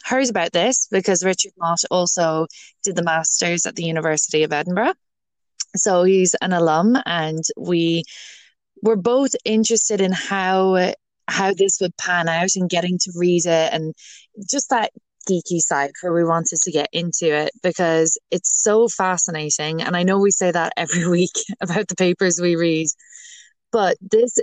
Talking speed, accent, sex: 165 wpm, Irish, female